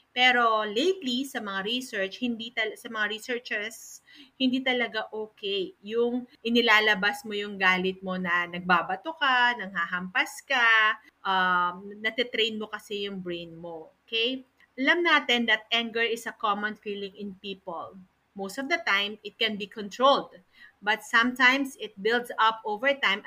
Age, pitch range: 40-59, 205-250 Hz